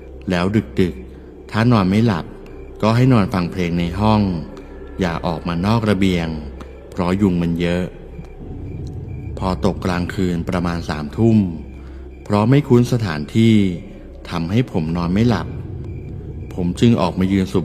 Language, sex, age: Thai, male, 60-79